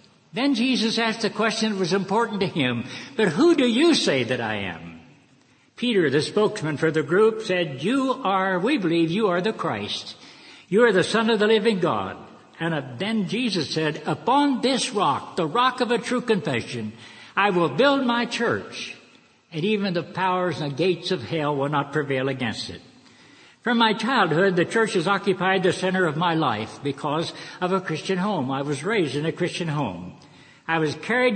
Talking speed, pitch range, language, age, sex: 190 wpm, 155-220 Hz, English, 60-79, male